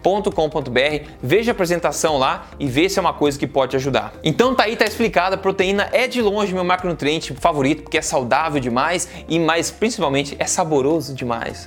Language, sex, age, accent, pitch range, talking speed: Portuguese, male, 20-39, Brazilian, 135-180 Hz, 190 wpm